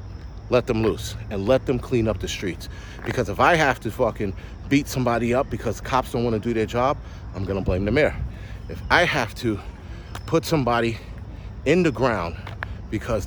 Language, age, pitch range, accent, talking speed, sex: English, 40-59, 90-125 Hz, American, 190 wpm, male